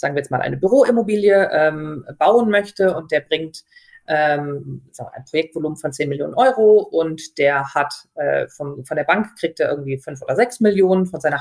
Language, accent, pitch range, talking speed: German, German, 155-185 Hz, 190 wpm